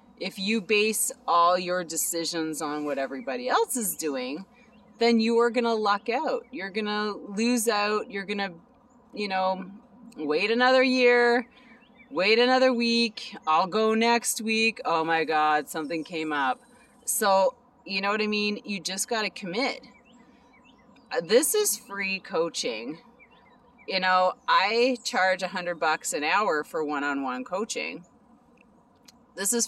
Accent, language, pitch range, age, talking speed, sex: American, English, 185-245 Hz, 30-49, 150 wpm, female